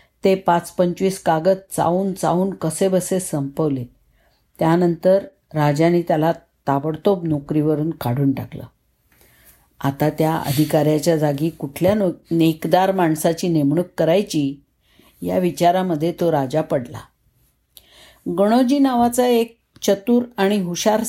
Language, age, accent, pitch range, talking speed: Marathi, 50-69, native, 160-215 Hz, 100 wpm